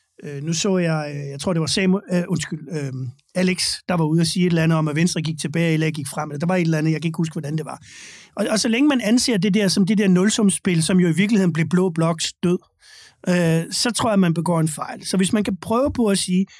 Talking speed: 285 wpm